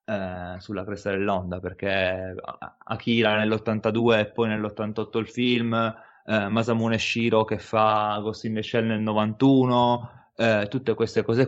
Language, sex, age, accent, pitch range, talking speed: Italian, male, 20-39, native, 105-120 Hz, 130 wpm